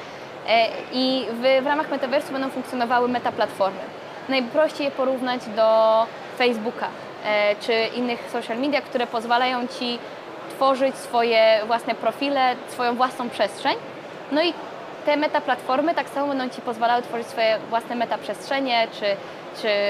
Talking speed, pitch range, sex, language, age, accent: 125 wpm, 235-280 Hz, female, Polish, 20-39, native